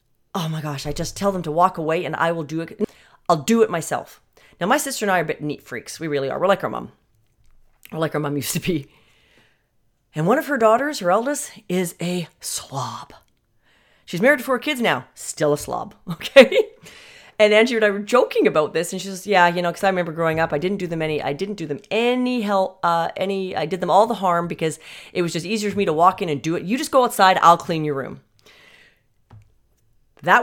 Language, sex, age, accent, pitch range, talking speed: English, female, 40-59, American, 145-205 Hz, 245 wpm